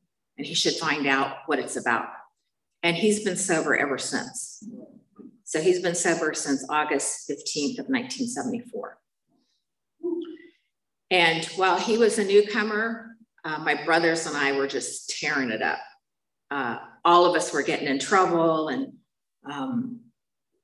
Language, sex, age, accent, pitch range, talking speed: English, female, 50-69, American, 155-220 Hz, 140 wpm